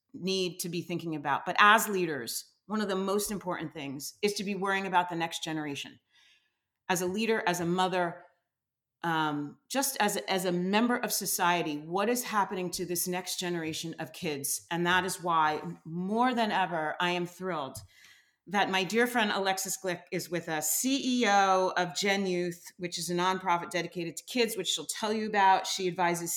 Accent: American